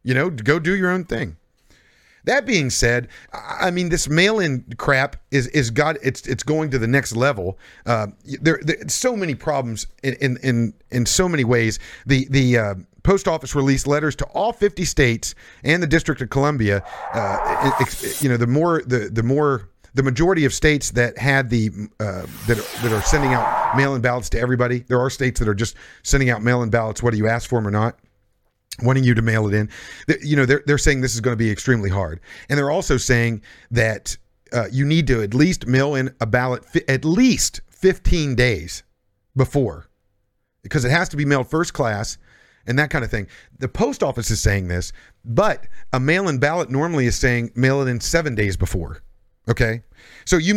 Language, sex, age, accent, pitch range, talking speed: English, male, 50-69, American, 115-145 Hz, 210 wpm